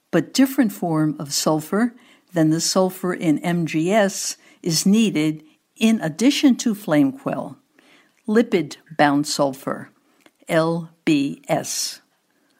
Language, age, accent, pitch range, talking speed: English, 60-79, American, 160-235 Hz, 95 wpm